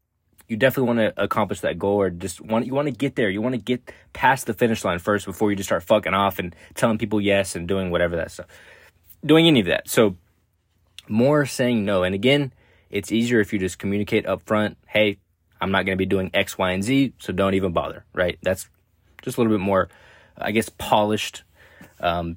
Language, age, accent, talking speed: English, 20-39, American, 225 wpm